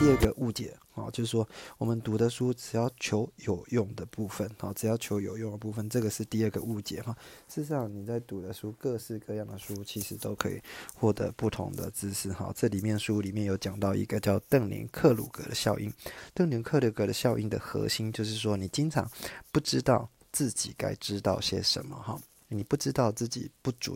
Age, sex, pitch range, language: 20-39, male, 105-120 Hz, Chinese